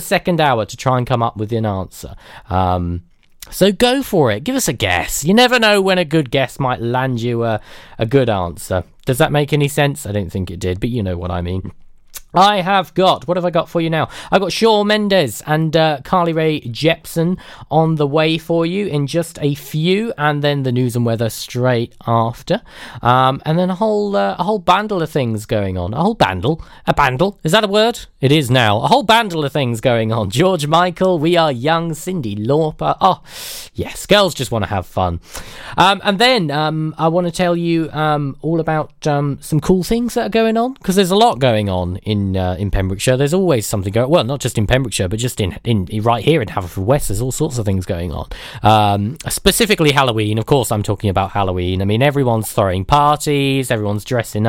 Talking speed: 225 wpm